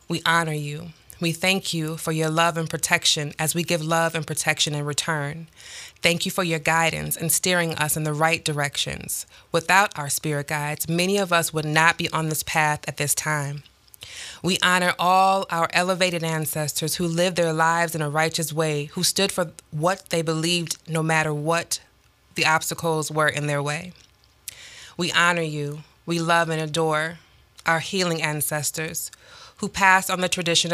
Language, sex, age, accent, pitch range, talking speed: English, female, 20-39, American, 155-175 Hz, 180 wpm